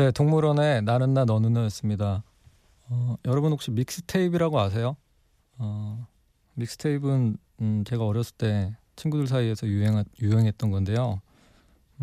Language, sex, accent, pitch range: Korean, male, native, 100-125 Hz